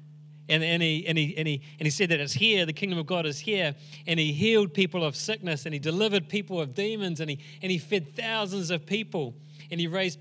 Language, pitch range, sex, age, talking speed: English, 150-200 Hz, male, 30-49, 245 wpm